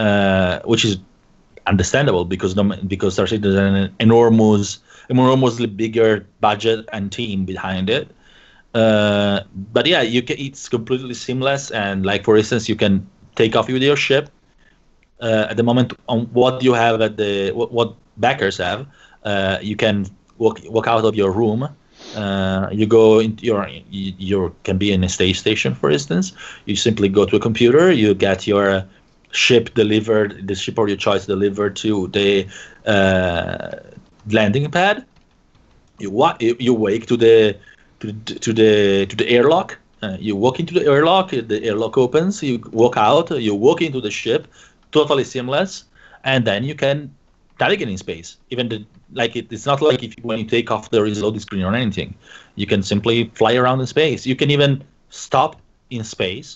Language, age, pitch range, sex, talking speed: English, 30-49, 100-120 Hz, male, 175 wpm